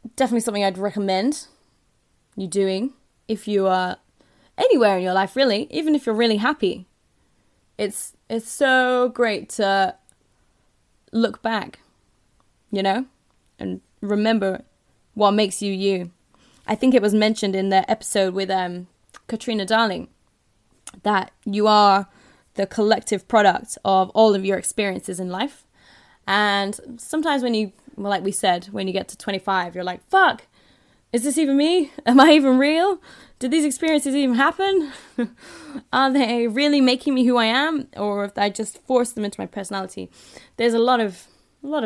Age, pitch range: 20-39, 195-250 Hz